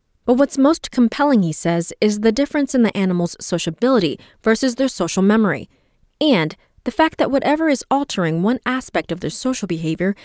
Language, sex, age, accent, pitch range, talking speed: English, female, 30-49, American, 175-270 Hz, 175 wpm